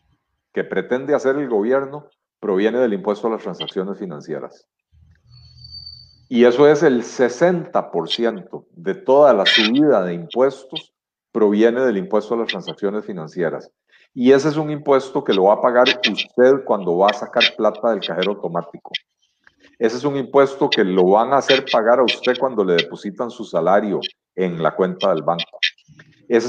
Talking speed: 165 wpm